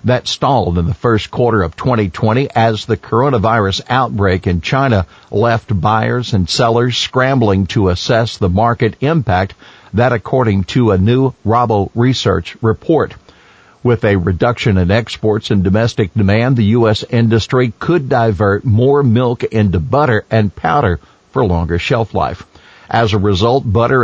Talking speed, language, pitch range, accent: 145 wpm, English, 100-125 Hz, American